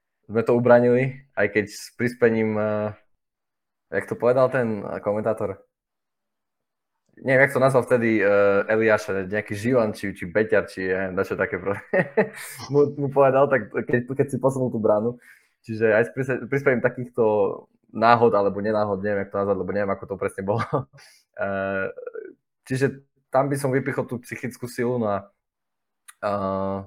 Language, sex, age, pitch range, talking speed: Slovak, male, 20-39, 100-120 Hz, 150 wpm